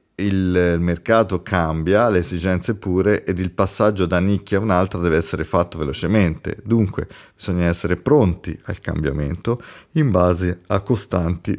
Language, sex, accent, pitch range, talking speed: Italian, male, native, 85-105 Hz, 140 wpm